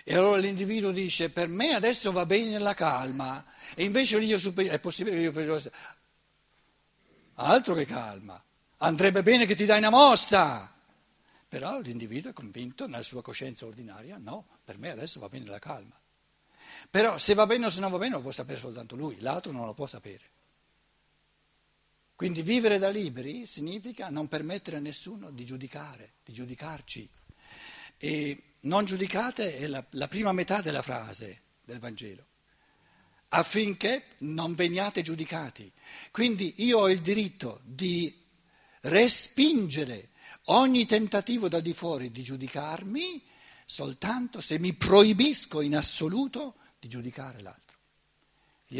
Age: 60-79